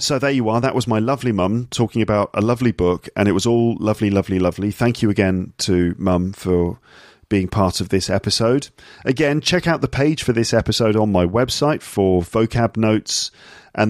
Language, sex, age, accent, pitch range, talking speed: English, male, 40-59, British, 100-130 Hz, 205 wpm